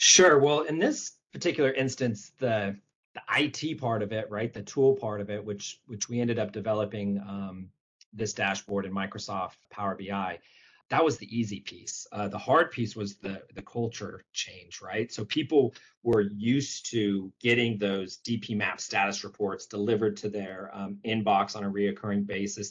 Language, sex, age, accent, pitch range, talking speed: English, male, 30-49, American, 100-115 Hz, 175 wpm